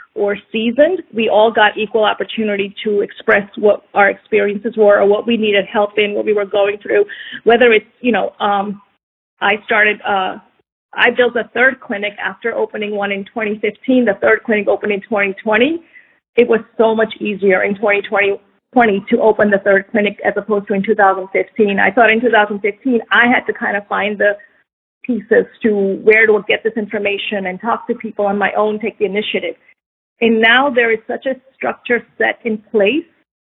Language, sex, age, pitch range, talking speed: English, female, 30-49, 205-230 Hz, 185 wpm